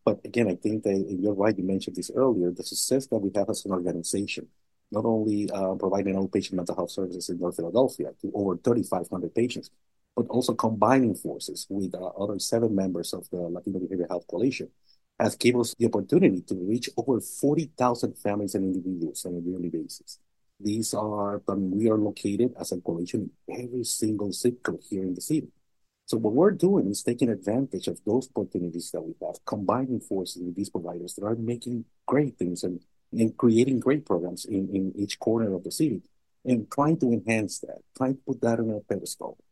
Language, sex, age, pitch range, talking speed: English, male, 50-69, 95-125 Hz, 195 wpm